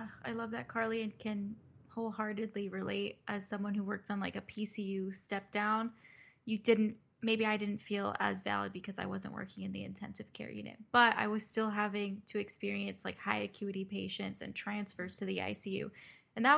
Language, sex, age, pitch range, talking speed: English, female, 10-29, 195-225 Hz, 190 wpm